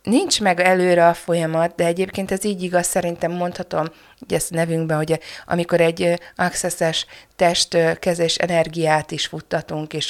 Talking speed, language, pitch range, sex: 150 wpm, Hungarian, 155-190 Hz, female